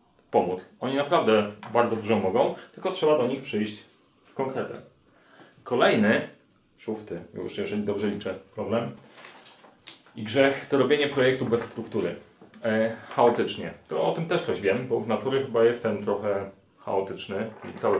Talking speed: 145 wpm